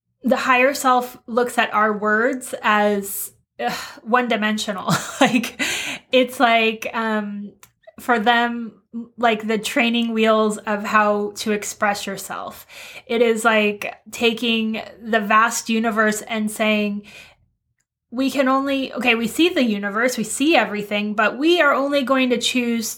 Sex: female